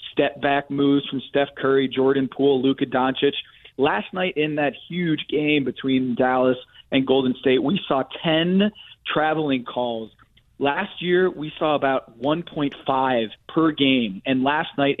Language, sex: English, male